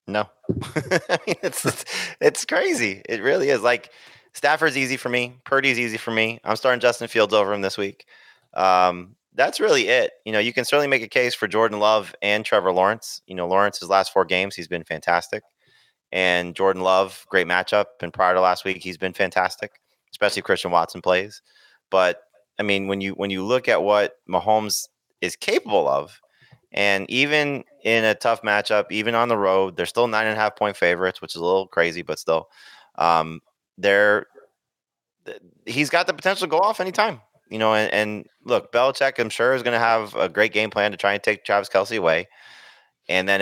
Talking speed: 200 wpm